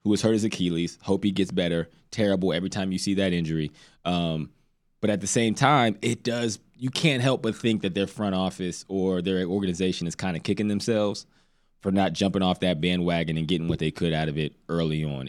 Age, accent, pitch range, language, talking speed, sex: 20-39, American, 90-110 Hz, English, 225 wpm, male